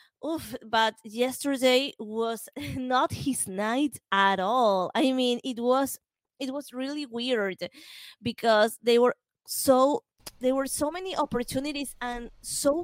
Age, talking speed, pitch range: 20-39, 130 wpm, 200-255 Hz